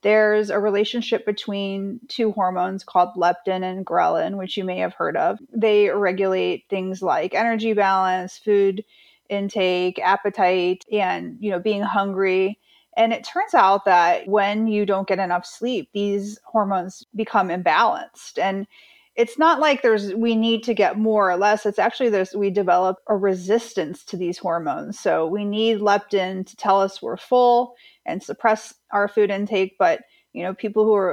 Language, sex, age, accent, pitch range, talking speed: English, female, 30-49, American, 190-225 Hz, 170 wpm